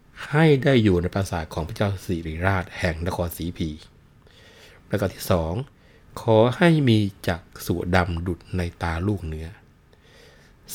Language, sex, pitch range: Thai, male, 85-110 Hz